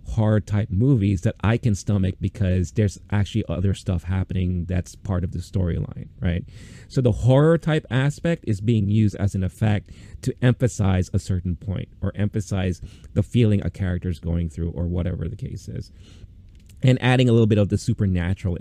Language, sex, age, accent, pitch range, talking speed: English, male, 30-49, American, 90-110 Hz, 175 wpm